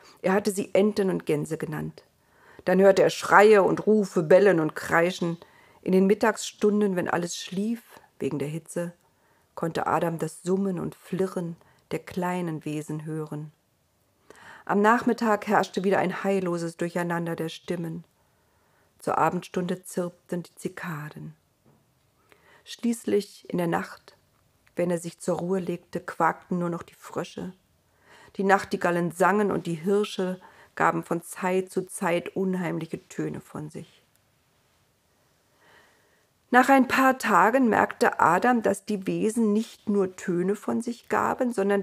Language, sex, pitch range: German, female, 170-210 Hz